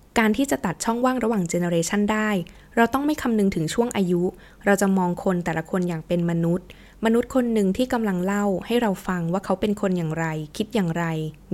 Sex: female